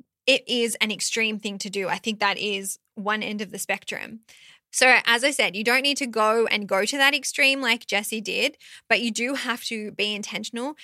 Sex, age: female, 20-39